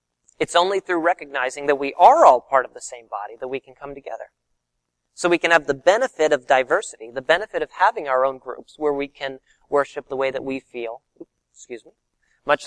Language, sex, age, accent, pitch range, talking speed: English, male, 30-49, American, 125-160 Hz, 220 wpm